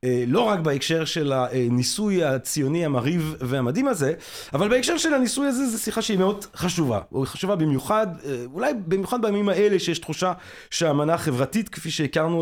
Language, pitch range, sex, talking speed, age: Hebrew, 145-200 Hz, male, 155 wpm, 30-49